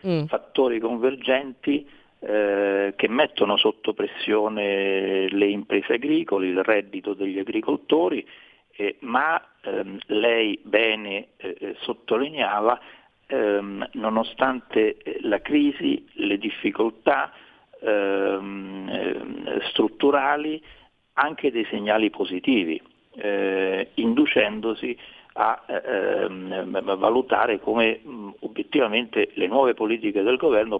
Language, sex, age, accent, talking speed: Italian, male, 50-69, native, 90 wpm